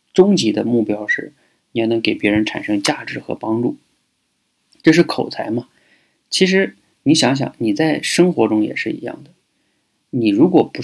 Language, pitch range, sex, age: Chinese, 110-125 Hz, male, 20-39